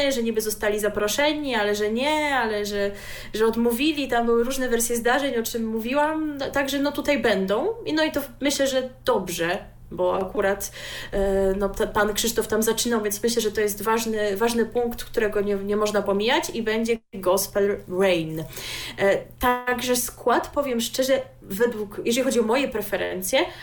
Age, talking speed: 20-39, 160 wpm